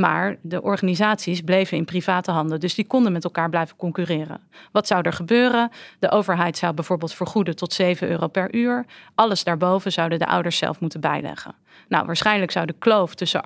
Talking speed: 185 wpm